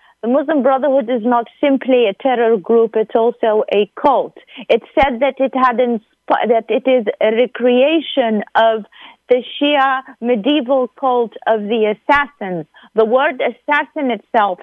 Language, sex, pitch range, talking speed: English, female, 210-265 Hz, 150 wpm